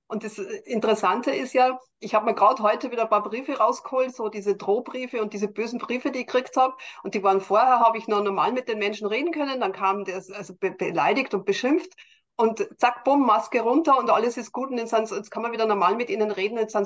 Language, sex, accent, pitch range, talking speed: German, female, German, 205-250 Hz, 240 wpm